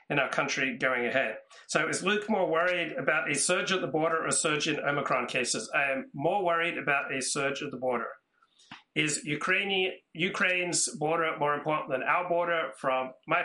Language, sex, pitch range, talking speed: English, male, 130-160 Hz, 185 wpm